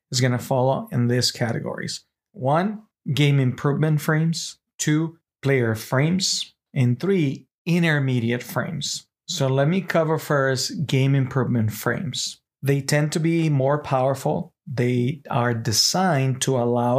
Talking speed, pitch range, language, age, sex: 125 wpm, 130-155 Hz, English, 40-59, male